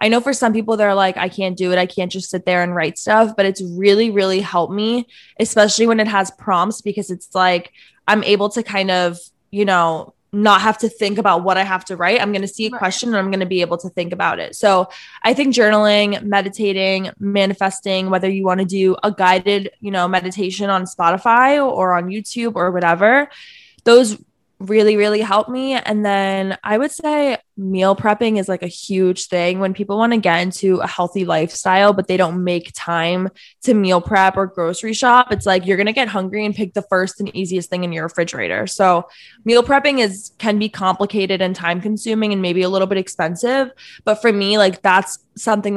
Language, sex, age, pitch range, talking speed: English, female, 20-39, 185-215 Hz, 215 wpm